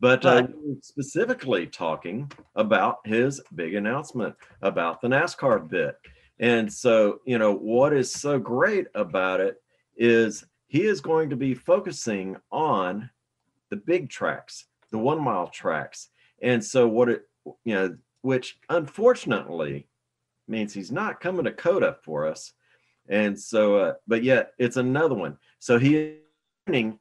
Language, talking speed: English, 145 wpm